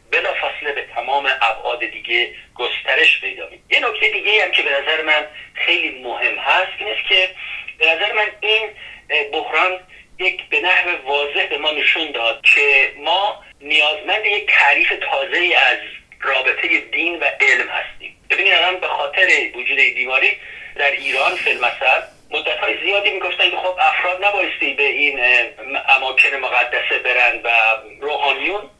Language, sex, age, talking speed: Persian, male, 50-69, 145 wpm